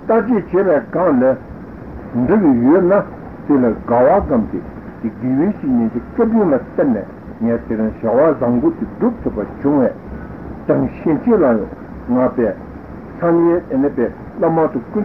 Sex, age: male, 60-79